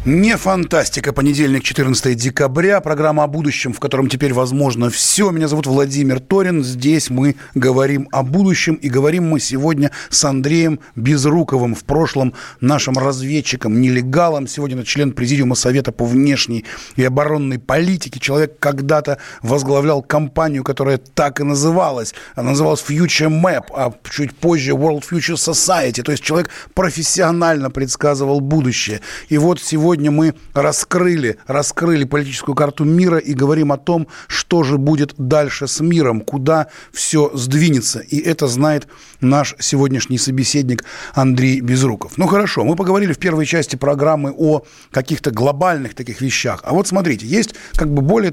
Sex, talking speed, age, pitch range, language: male, 145 wpm, 30-49, 135-160 Hz, Russian